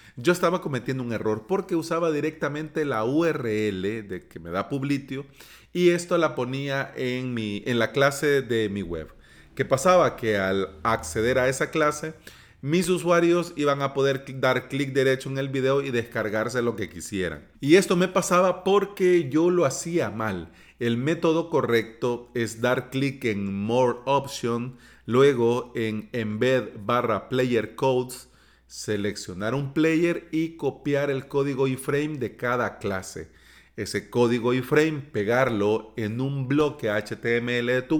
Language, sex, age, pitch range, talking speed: Spanish, male, 40-59, 110-140 Hz, 150 wpm